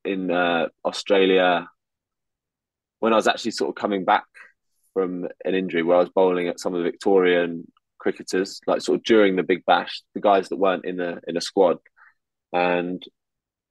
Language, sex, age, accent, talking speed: English, male, 20-39, British, 185 wpm